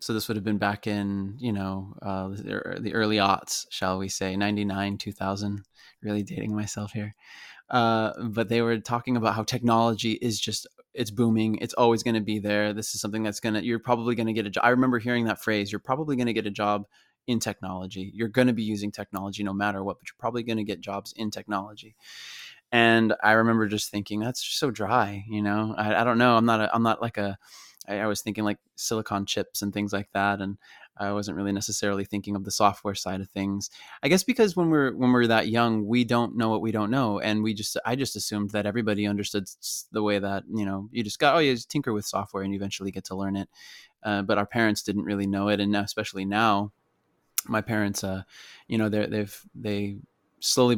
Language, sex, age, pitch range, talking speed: English, male, 20-39, 100-115 Hz, 230 wpm